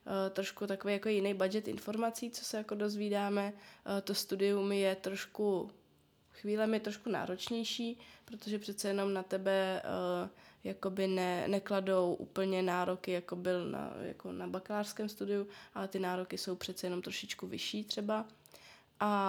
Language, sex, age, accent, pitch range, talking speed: Czech, female, 20-39, native, 185-205 Hz, 135 wpm